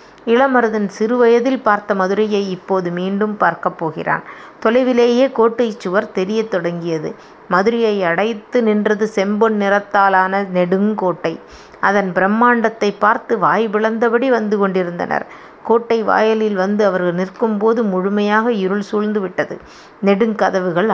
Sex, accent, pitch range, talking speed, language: female, native, 190-225 Hz, 105 wpm, Tamil